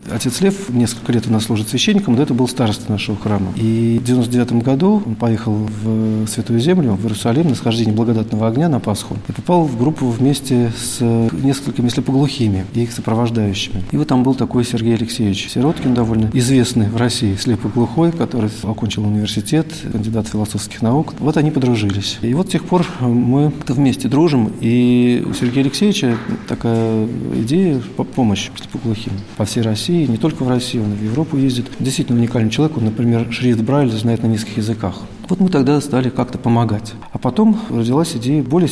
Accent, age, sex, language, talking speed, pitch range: native, 40-59, male, Russian, 180 wpm, 110-140 Hz